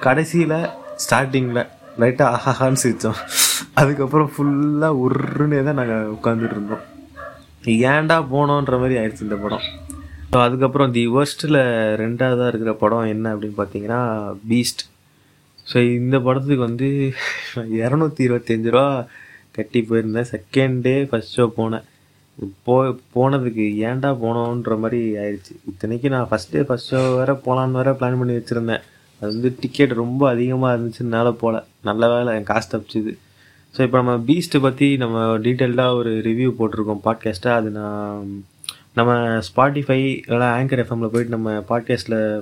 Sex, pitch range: male, 110-135 Hz